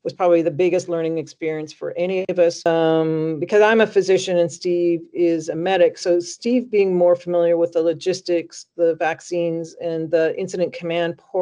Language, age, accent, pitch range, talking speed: English, 40-59, American, 160-190 Hz, 180 wpm